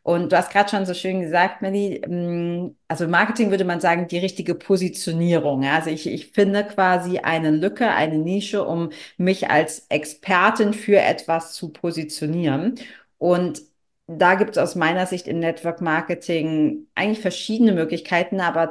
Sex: female